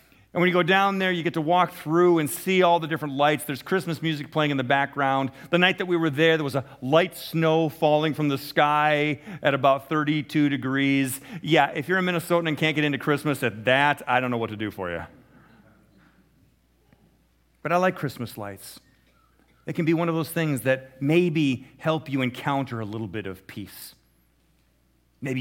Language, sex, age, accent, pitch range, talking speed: English, male, 40-59, American, 130-175 Hz, 205 wpm